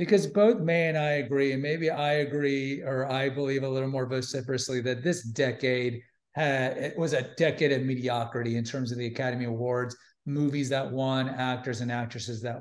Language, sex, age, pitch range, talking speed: English, male, 40-59, 130-180 Hz, 190 wpm